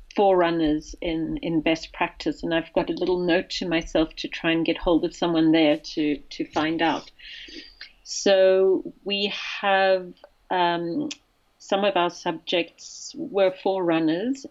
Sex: female